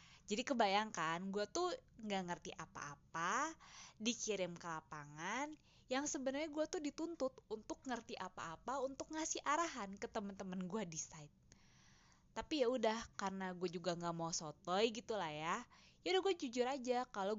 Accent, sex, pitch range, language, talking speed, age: native, female, 175-245 Hz, Indonesian, 145 wpm, 20-39